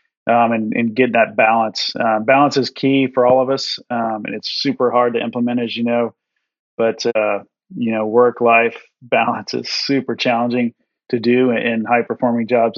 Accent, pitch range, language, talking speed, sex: American, 115-125 Hz, English, 180 wpm, male